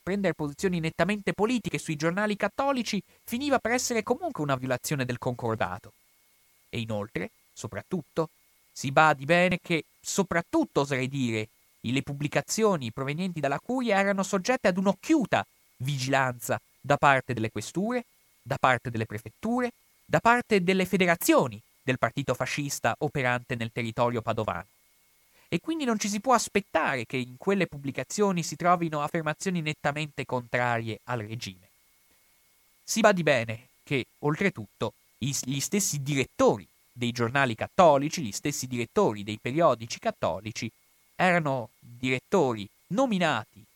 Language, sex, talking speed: Italian, male, 130 wpm